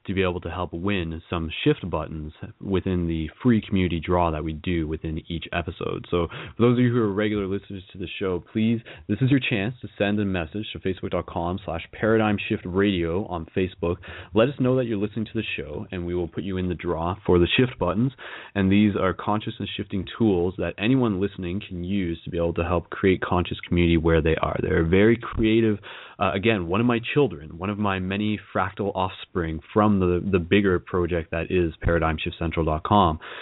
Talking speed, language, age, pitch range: 205 wpm, English, 20-39, 85-105 Hz